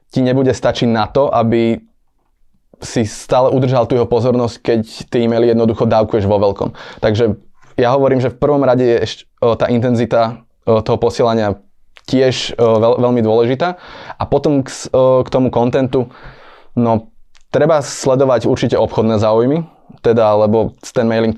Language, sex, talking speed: Slovak, male, 160 wpm